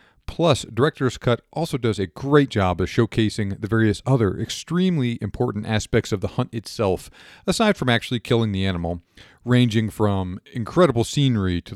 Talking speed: 160 wpm